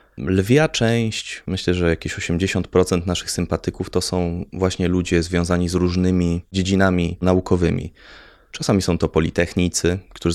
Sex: male